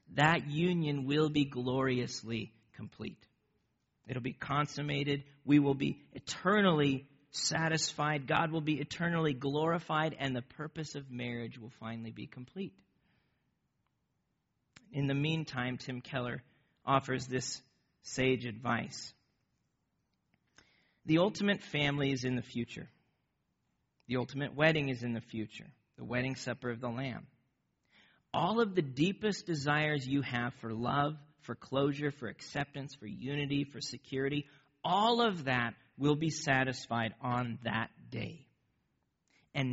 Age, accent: 40-59, American